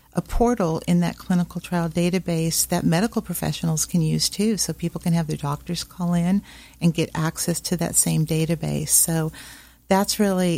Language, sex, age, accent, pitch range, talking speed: English, female, 50-69, American, 165-195 Hz, 175 wpm